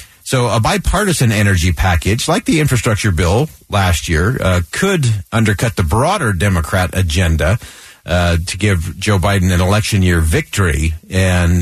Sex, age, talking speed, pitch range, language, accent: male, 50-69, 145 wpm, 90-125 Hz, English, American